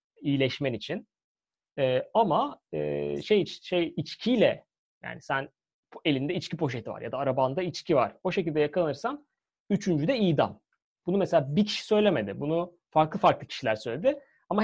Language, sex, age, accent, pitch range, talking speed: Turkish, male, 30-49, native, 130-180 Hz, 150 wpm